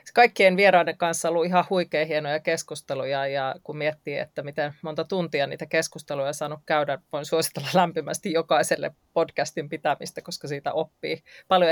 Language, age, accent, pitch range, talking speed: Finnish, 30-49, native, 150-175 Hz, 160 wpm